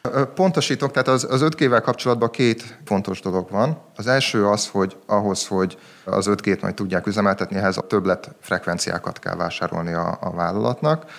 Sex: male